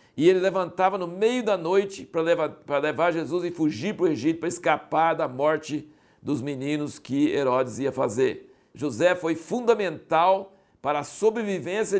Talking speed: 160 wpm